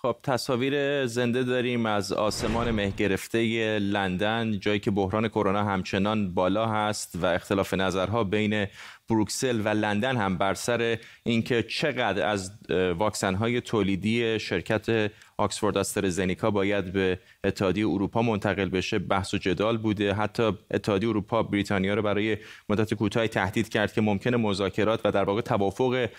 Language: Persian